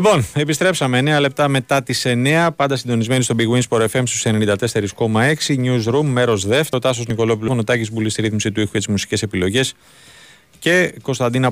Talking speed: 175 wpm